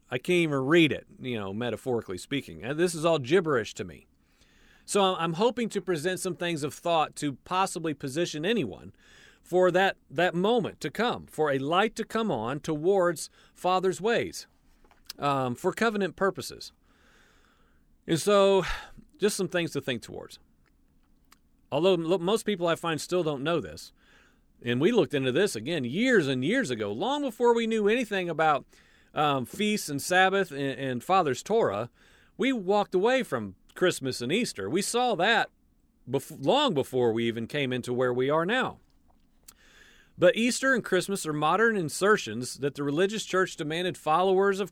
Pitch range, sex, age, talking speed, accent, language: 140-195 Hz, male, 40-59, 165 wpm, American, English